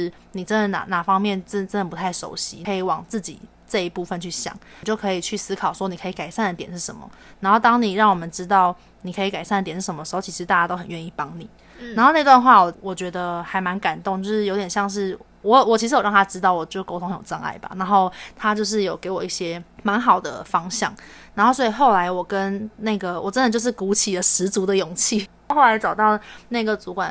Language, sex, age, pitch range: Chinese, female, 20-39, 180-210 Hz